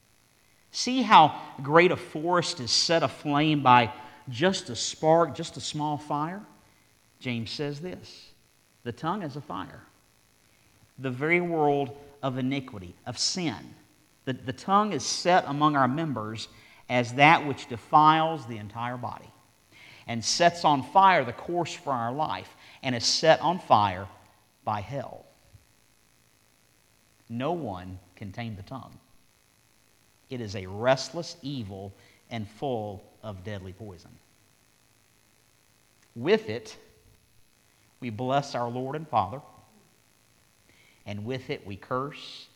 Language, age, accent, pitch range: English, 50-69, American, 110-150 Hz